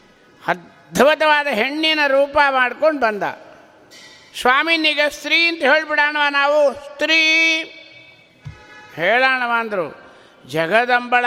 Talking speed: 75 wpm